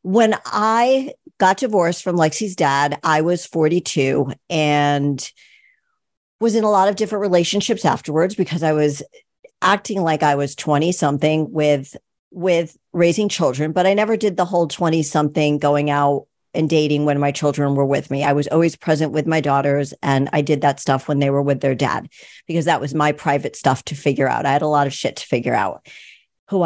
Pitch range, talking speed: 145-195 Hz, 195 wpm